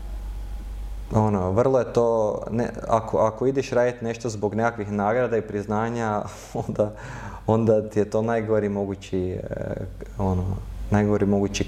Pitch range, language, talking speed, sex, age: 100-115 Hz, English, 125 wpm, male, 20-39